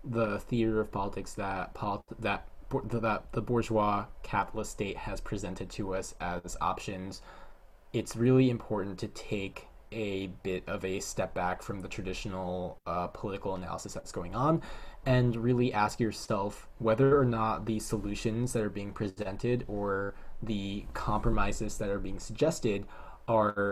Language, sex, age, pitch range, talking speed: English, male, 20-39, 95-115 Hz, 145 wpm